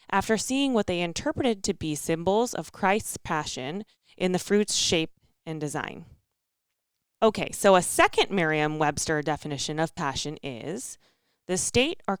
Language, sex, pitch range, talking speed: English, female, 160-230 Hz, 145 wpm